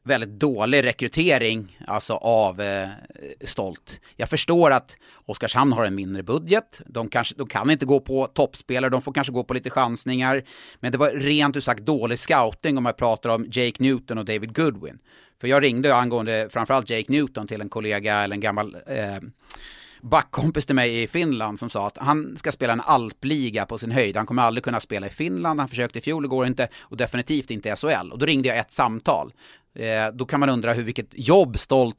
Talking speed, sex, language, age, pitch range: 205 wpm, male, Swedish, 30-49, 110-140 Hz